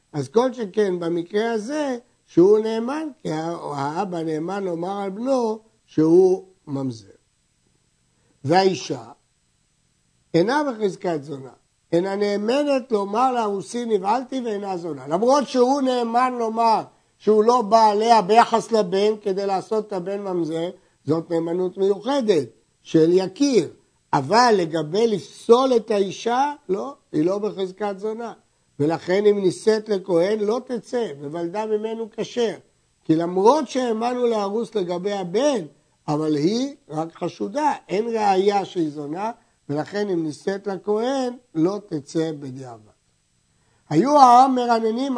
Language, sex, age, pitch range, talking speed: Hebrew, male, 60-79, 170-230 Hz, 120 wpm